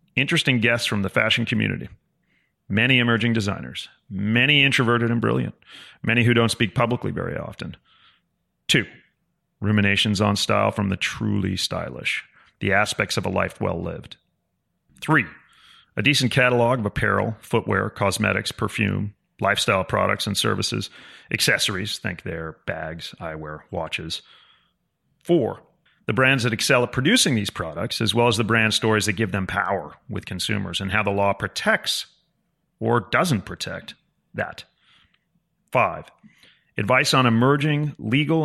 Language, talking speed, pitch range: English, 135 wpm, 100-120 Hz